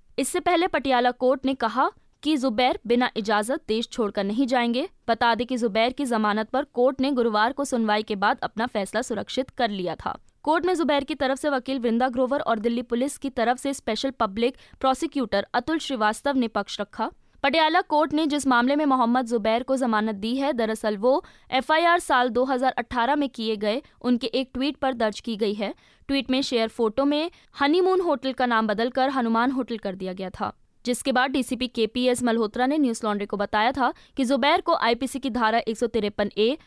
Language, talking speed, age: Hindi, 200 wpm, 20-39